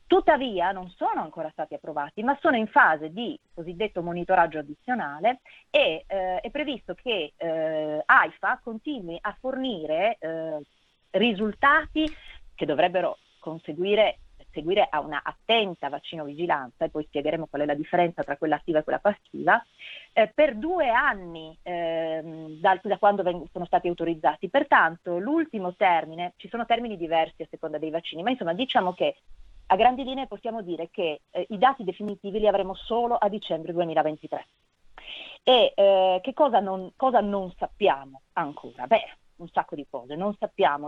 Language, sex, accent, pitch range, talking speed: Italian, female, native, 165-230 Hz, 155 wpm